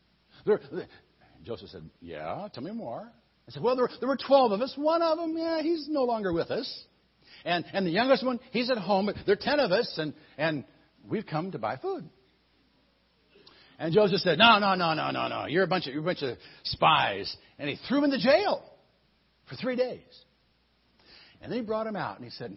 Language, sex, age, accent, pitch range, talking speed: English, male, 60-79, American, 130-200 Hz, 225 wpm